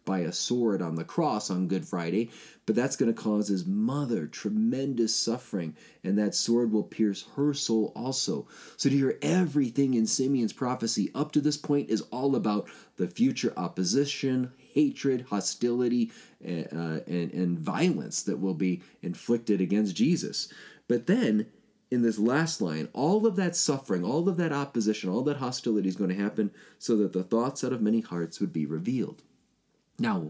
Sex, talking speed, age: male, 175 wpm, 30-49